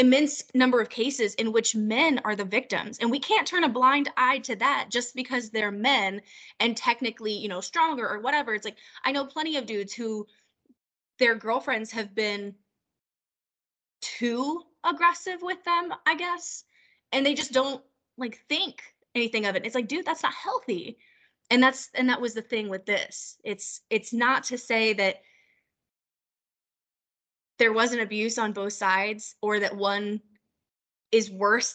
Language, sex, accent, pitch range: English, female, American, 210-265 Hz